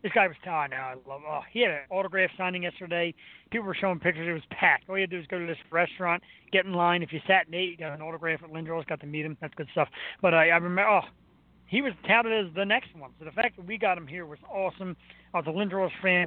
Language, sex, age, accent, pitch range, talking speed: English, male, 30-49, American, 155-205 Hz, 295 wpm